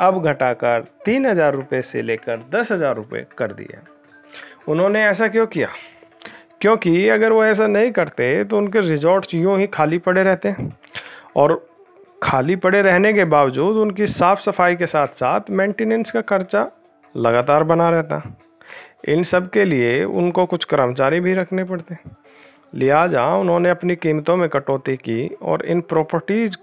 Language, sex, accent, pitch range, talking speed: Hindi, male, native, 155-195 Hz, 150 wpm